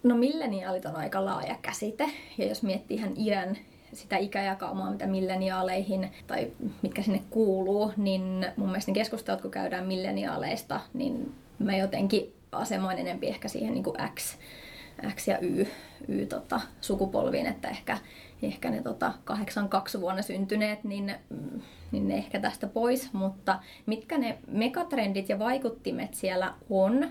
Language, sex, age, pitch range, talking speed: Finnish, female, 20-39, 190-225 Hz, 135 wpm